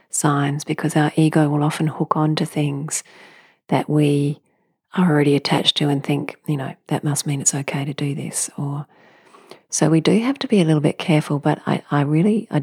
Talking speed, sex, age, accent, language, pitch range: 210 wpm, female, 40-59, Australian, English, 145-180 Hz